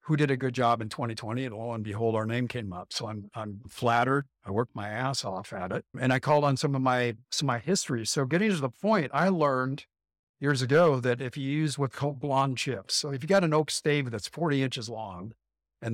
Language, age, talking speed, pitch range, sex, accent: English, 60-79, 250 wpm, 120-150 Hz, male, American